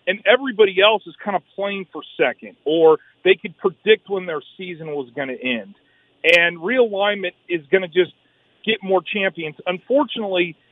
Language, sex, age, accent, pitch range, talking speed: English, male, 40-59, American, 155-195 Hz, 170 wpm